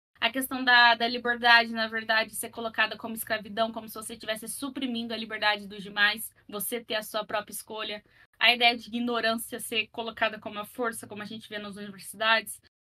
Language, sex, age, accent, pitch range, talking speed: Portuguese, female, 10-29, Brazilian, 220-250 Hz, 190 wpm